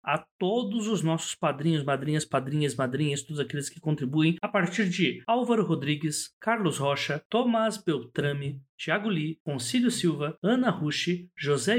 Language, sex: Portuguese, male